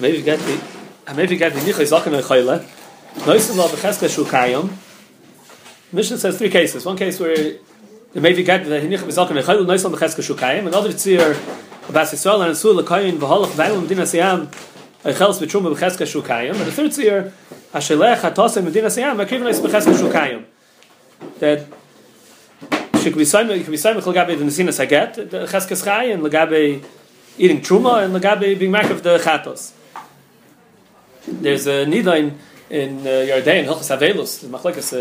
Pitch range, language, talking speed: 150-195 Hz, English, 65 wpm